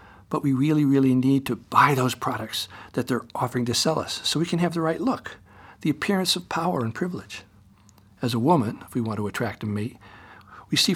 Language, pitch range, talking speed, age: English, 105-145 Hz, 220 wpm, 60-79